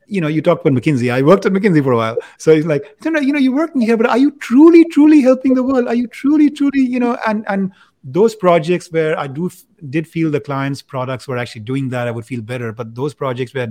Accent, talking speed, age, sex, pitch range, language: Indian, 275 wpm, 30-49, male, 130-175 Hz, English